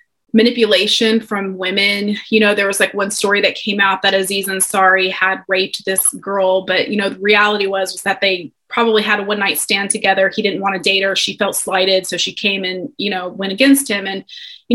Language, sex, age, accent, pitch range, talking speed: English, female, 20-39, American, 190-220 Hz, 230 wpm